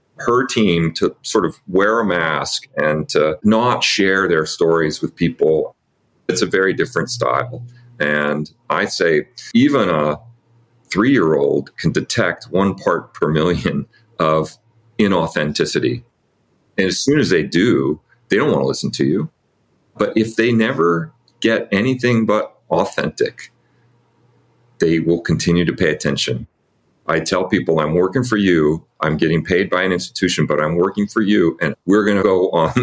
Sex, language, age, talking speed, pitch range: male, English, 40-59, 155 wpm, 85-120 Hz